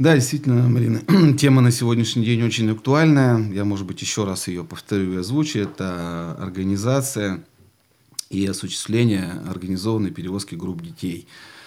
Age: 30-49